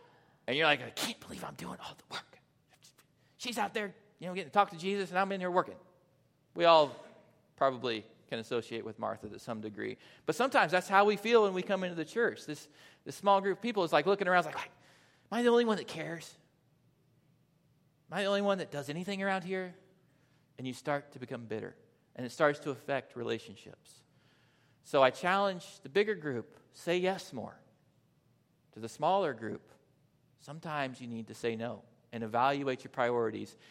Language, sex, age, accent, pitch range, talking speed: English, male, 40-59, American, 120-170 Hz, 200 wpm